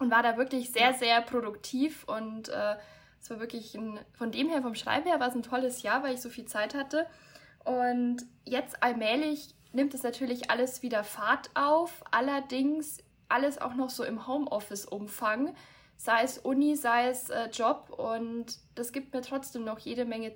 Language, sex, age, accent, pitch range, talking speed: German, female, 10-29, German, 220-260 Hz, 180 wpm